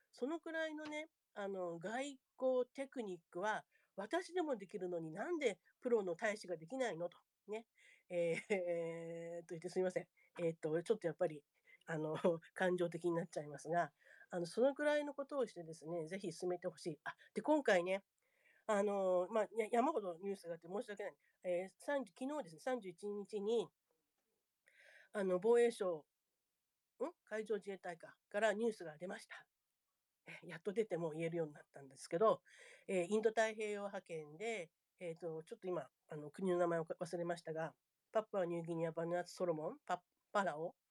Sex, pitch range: female, 170-235 Hz